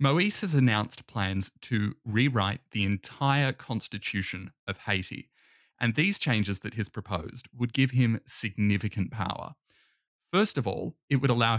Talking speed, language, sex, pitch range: 145 wpm, English, male, 100-130 Hz